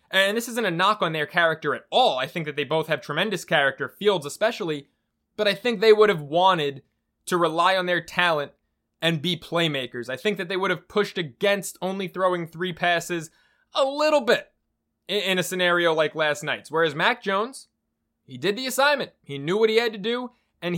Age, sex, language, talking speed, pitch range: 20-39, male, English, 205 wpm, 155-205 Hz